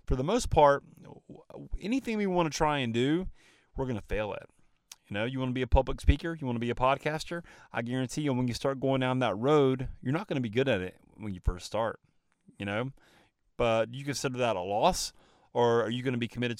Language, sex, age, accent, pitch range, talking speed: English, male, 30-49, American, 115-150 Hz, 245 wpm